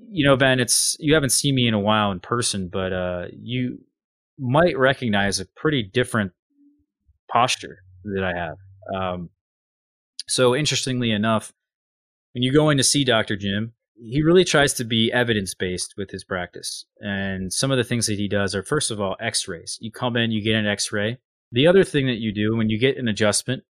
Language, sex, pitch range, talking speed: English, male, 100-130 Hz, 195 wpm